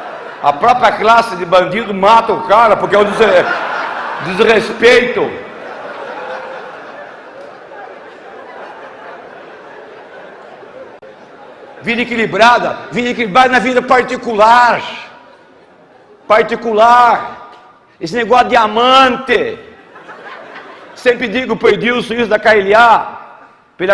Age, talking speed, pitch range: 60-79, 80 wpm, 185-240 Hz